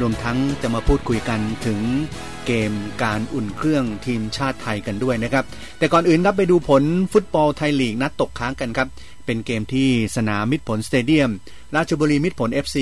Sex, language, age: male, Thai, 30-49